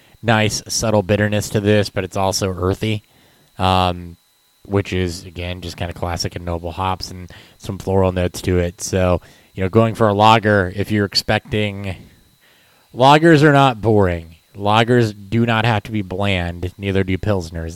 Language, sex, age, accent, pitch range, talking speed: English, male, 20-39, American, 90-105 Hz, 170 wpm